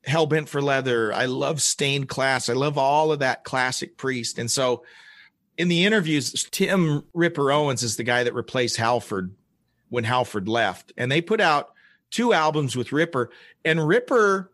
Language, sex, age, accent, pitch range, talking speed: English, male, 40-59, American, 125-165 Hz, 170 wpm